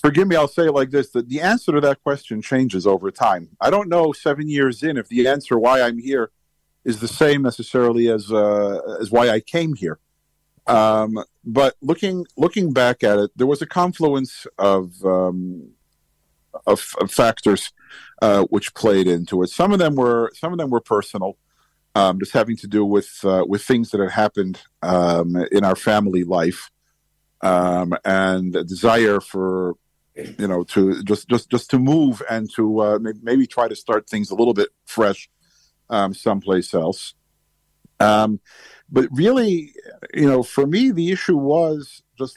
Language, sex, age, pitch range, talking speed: English, male, 50-69, 105-140 Hz, 175 wpm